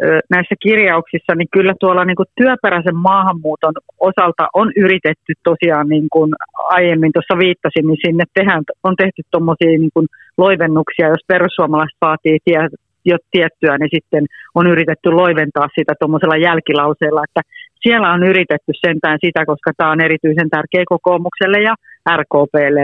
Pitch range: 150-180 Hz